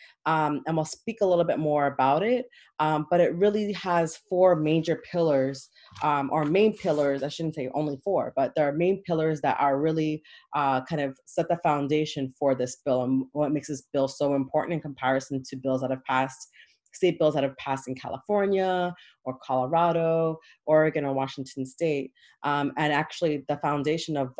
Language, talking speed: English, 190 wpm